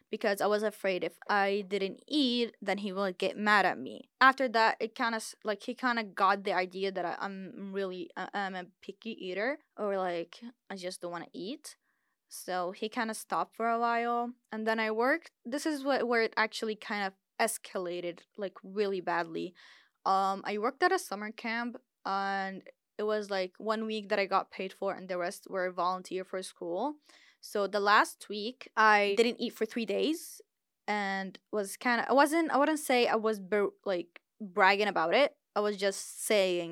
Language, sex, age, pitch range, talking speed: English, female, 10-29, 195-240 Hz, 200 wpm